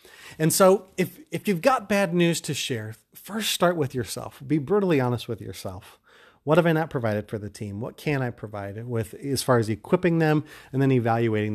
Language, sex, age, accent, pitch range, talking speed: English, male, 30-49, American, 115-160 Hz, 210 wpm